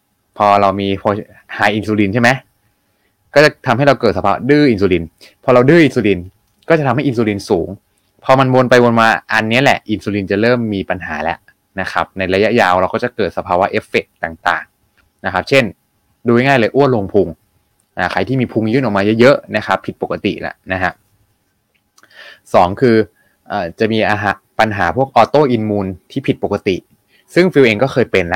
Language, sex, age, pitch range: Thai, male, 20-39, 100-125 Hz